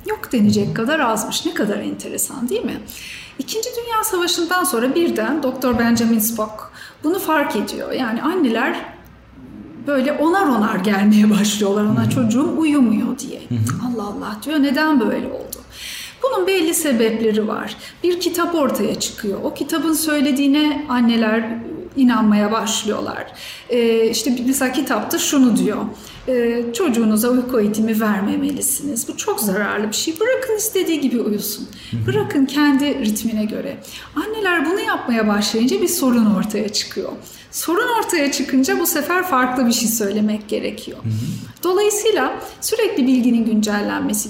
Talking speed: 130 wpm